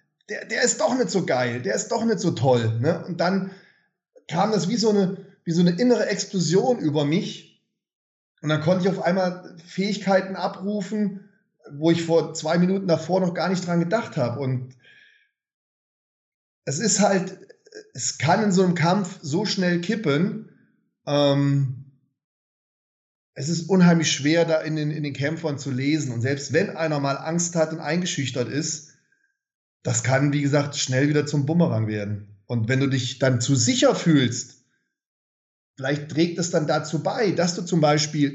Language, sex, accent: German, male, German